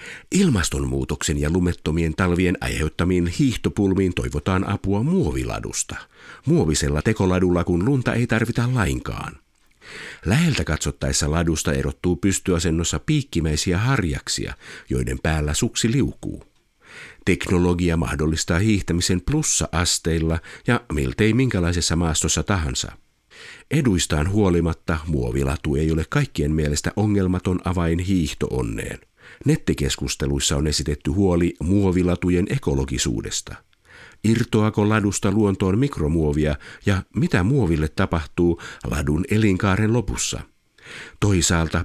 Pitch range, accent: 75-100 Hz, native